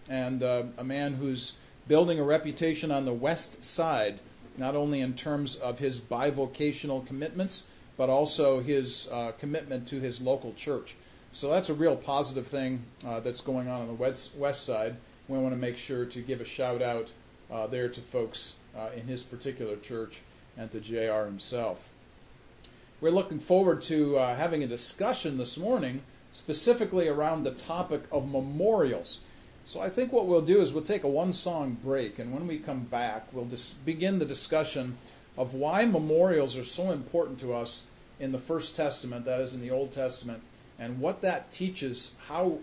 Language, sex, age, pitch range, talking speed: English, male, 40-59, 125-155 Hz, 180 wpm